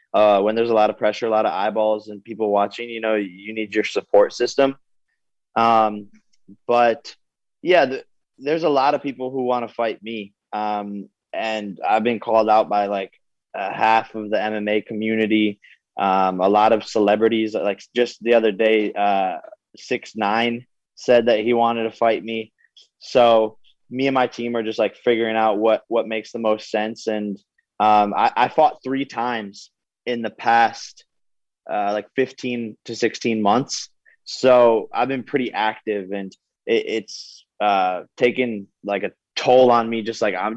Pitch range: 105-120 Hz